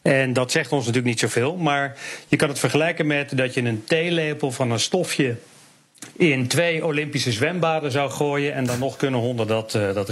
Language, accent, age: English, Dutch, 40-59